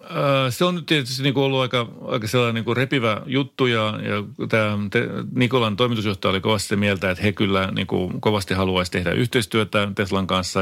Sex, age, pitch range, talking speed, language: male, 30-49, 95-120 Hz, 180 wpm, Finnish